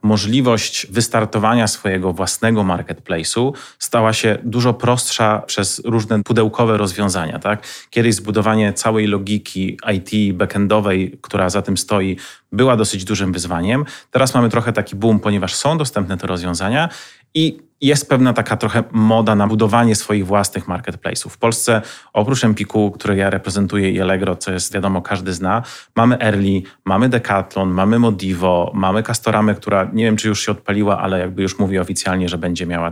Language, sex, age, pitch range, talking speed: Polish, male, 30-49, 95-115 Hz, 155 wpm